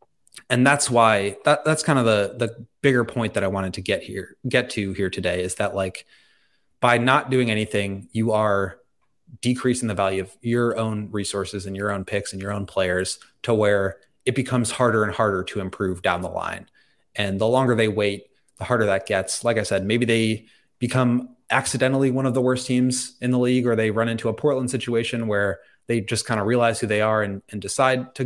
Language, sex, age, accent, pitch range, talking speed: English, male, 20-39, American, 105-125 Hz, 215 wpm